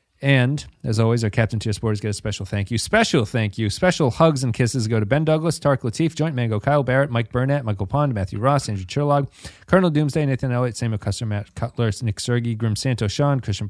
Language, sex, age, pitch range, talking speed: English, male, 30-49, 105-145 Hz, 225 wpm